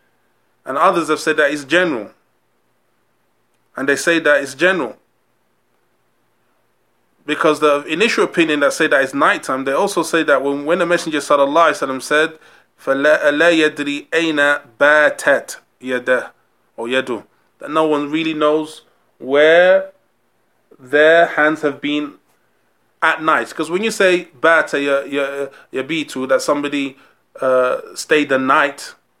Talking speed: 125 wpm